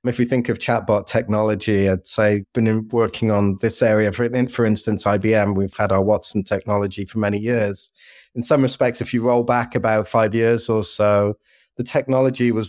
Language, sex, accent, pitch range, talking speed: English, male, British, 105-120 Hz, 190 wpm